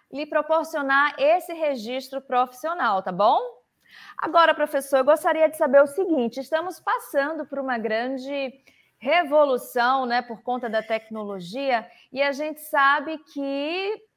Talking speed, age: 130 wpm, 20-39